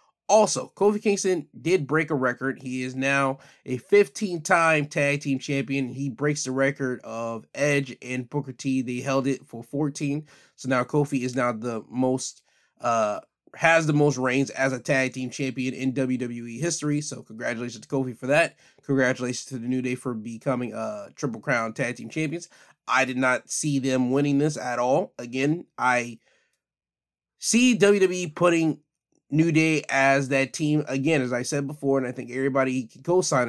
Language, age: English, 20-39